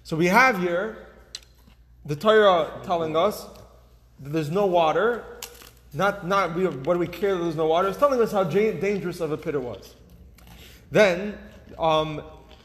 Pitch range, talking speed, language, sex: 135-195 Hz, 165 wpm, English, male